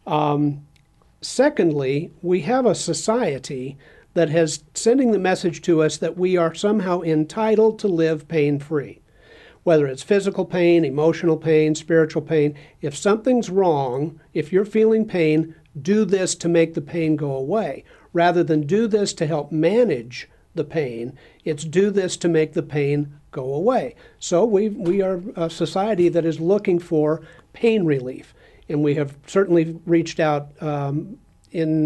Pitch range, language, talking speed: 155-185 Hz, English, 155 wpm